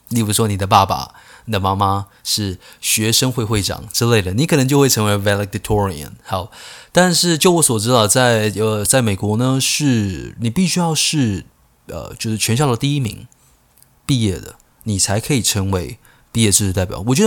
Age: 20-39